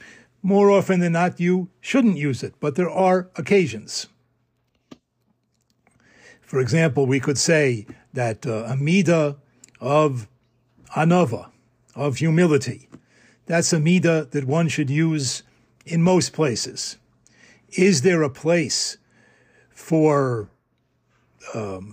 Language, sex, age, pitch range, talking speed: English, male, 60-79, 135-175 Hz, 105 wpm